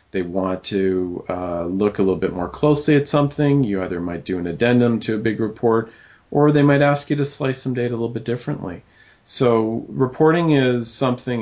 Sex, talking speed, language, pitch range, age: male, 205 wpm, English, 95-115 Hz, 40-59